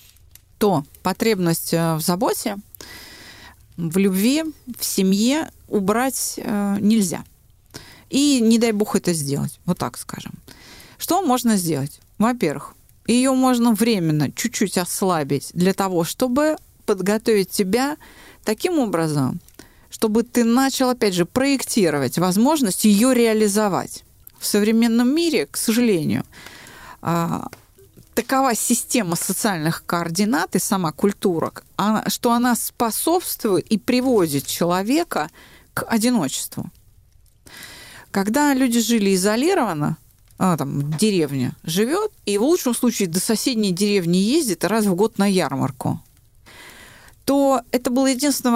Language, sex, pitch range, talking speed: Russian, female, 175-245 Hz, 110 wpm